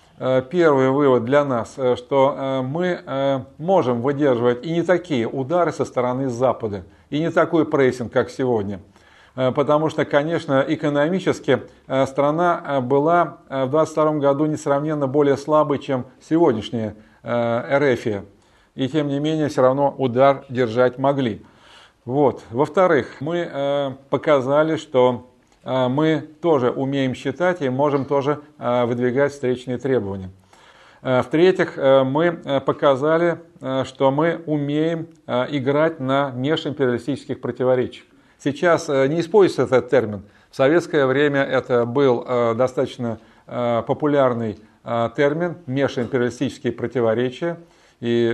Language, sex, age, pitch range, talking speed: Russian, male, 40-59, 125-150 Hz, 105 wpm